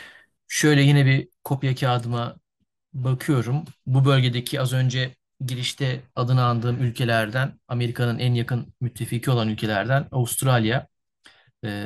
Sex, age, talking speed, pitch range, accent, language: male, 40-59, 110 wpm, 110-130 Hz, native, Turkish